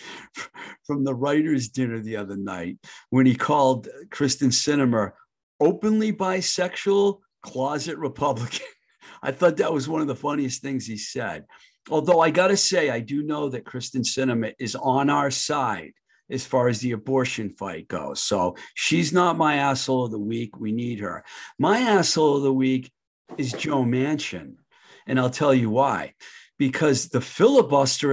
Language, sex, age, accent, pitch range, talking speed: English, male, 50-69, American, 115-150 Hz, 160 wpm